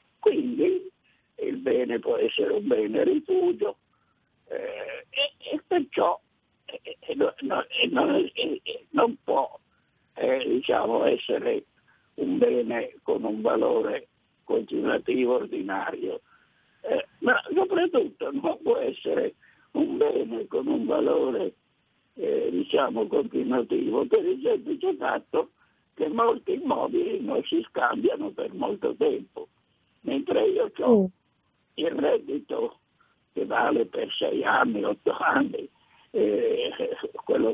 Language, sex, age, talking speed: Italian, male, 60-79, 100 wpm